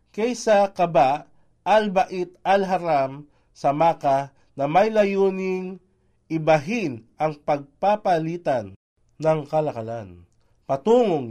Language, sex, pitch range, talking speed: English, male, 150-190 Hz, 75 wpm